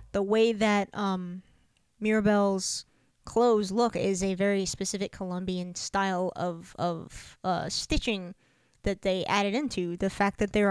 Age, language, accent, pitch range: 20-39, English, American, 180-205 Hz